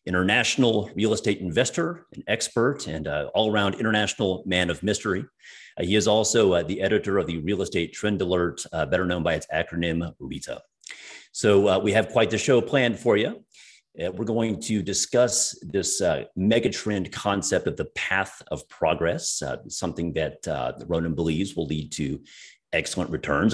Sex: male